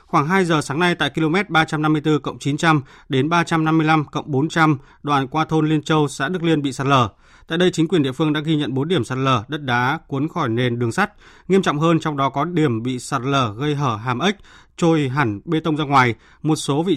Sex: male